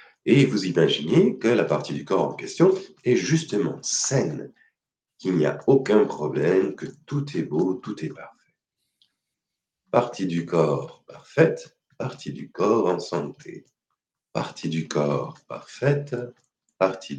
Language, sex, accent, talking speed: French, male, French, 135 wpm